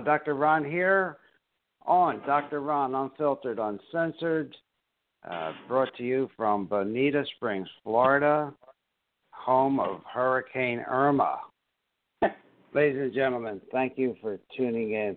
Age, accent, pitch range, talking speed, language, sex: 60-79, American, 105-150 Hz, 110 wpm, English, male